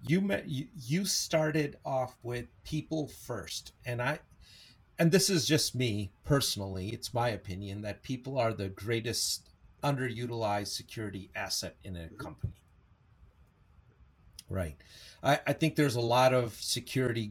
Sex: male